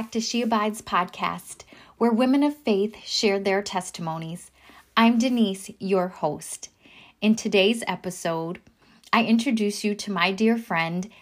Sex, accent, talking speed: female, American, 135 wpm